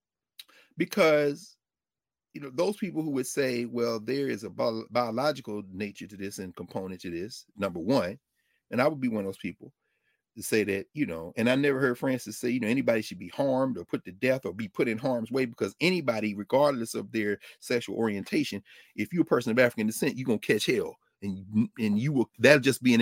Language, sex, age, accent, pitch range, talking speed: English, male, 40-59, American, 120-175 Hz, 220 wpm